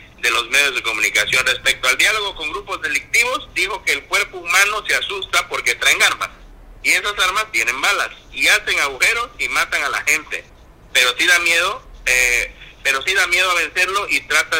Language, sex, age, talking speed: Spanish, male, 50-69, 195 wpm